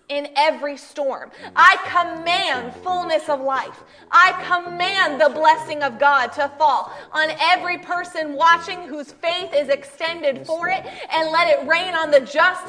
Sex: female